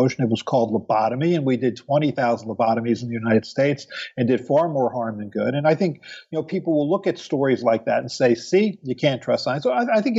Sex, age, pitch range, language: male, 50-69, 120-150 Hz, English